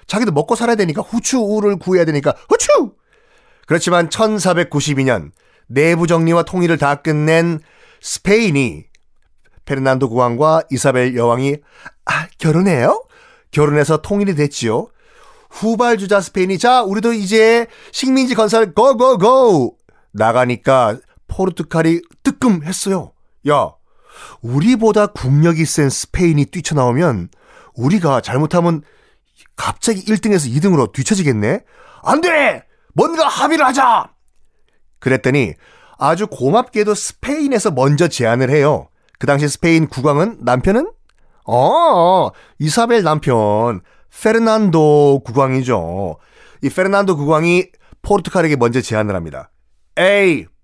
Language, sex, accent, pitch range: Korean, male, native, 140-205 Hz